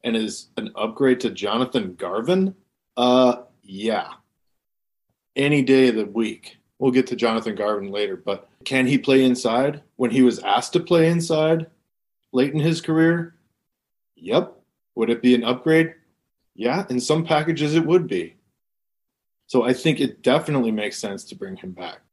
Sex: male